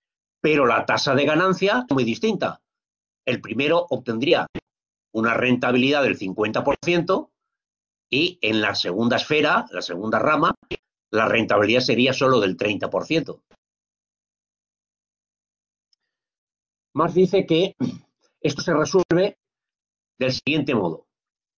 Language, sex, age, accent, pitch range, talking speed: Spanish, male, 50-69, Spanish, 125-185 Hz, 105 wpm